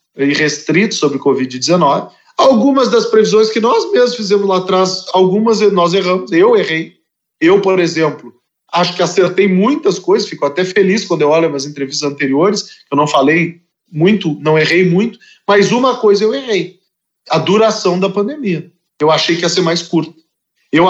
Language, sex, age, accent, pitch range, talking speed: Portuguese, male, 40-59, Brazilian, 145-195 Hz, 170 wpm